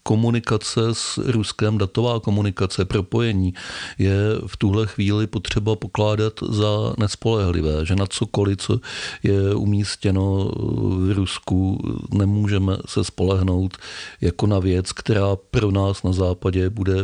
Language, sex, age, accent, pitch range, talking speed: Czech, male, 40-59, native, 95-110 Hz, 120 wpm